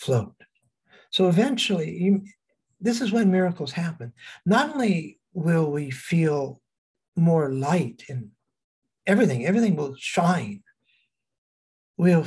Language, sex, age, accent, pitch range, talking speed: English, male, 60-79, American, 120-165 Hz, 105 wpm